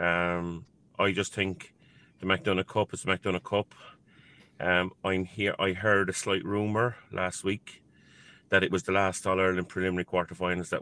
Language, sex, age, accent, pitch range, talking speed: English, male, 30-49, Irish, 90-100 Hz, 170 wpm